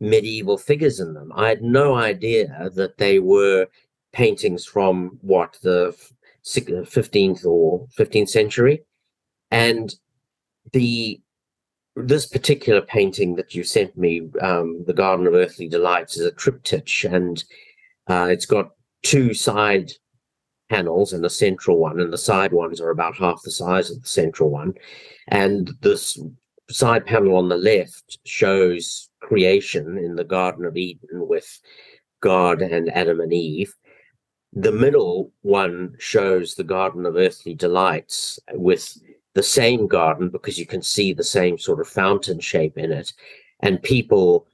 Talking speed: 145 wpm